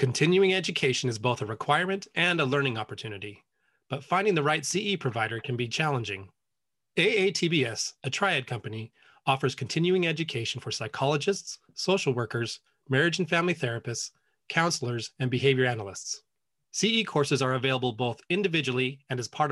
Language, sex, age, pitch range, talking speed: English, male, 30-49, 125-175 Hz, 145 wpm